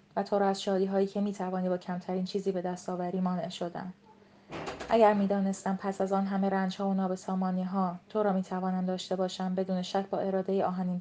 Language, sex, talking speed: Persian, female, 190 wpm